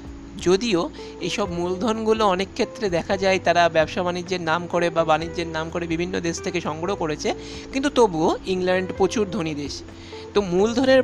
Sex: male